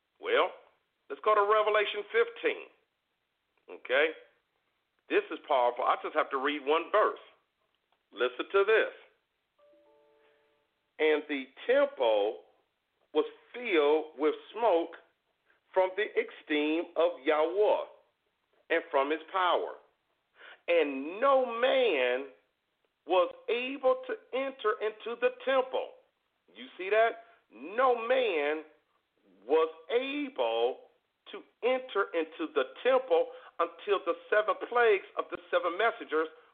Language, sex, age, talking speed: English, male, 50-69, 110 wpm